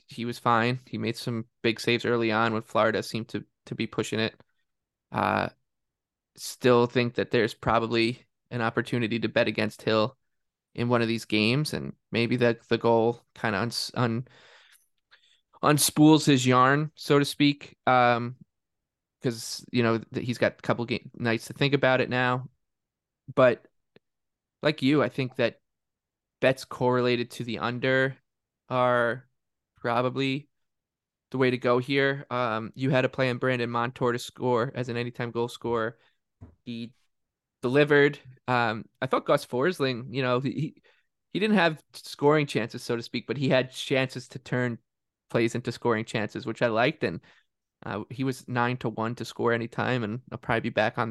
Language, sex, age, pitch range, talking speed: English, male, 20-39, 115-130 Hz, 175 wpm